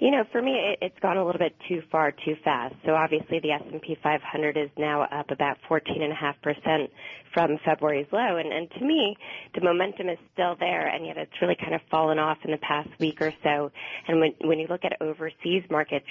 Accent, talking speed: American, 210 wpm